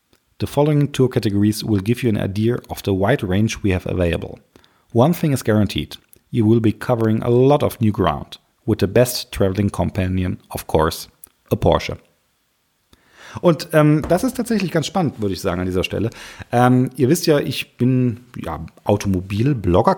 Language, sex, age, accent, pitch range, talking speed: German, male, 40-59, German, 95-125 Hz, 175 wpm